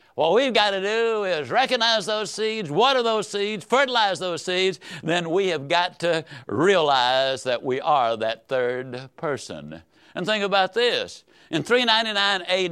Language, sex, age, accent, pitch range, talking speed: English, male, 60-79, American, 135-215 Hz, 160 wpm